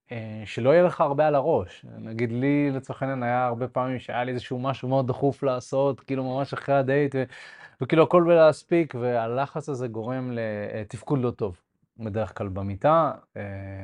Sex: male